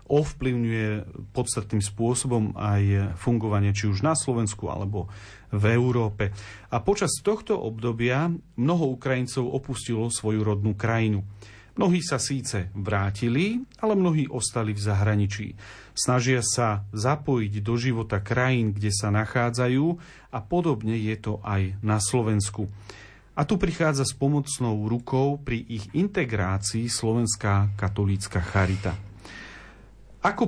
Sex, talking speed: male, 120 wpm